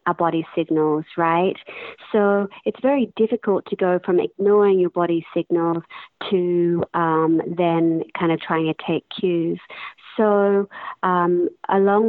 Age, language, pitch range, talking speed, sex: 40-59, English, 165-190 Hz, 135 wpm, female